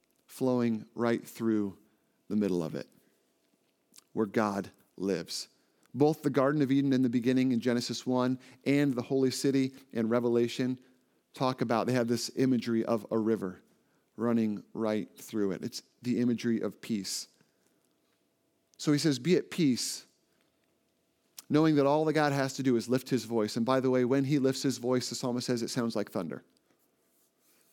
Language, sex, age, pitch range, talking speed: English, male, 40-59, 120-150 Hz, 170 wpm